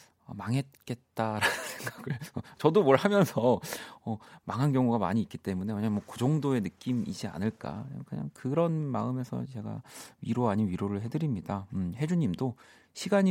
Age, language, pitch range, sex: 40-59, Korean, 95-135 Hz, male